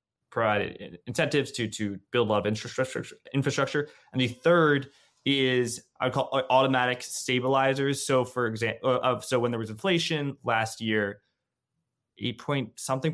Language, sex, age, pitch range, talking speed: English, male, 20-39, 105-130 Hz, 155 wpm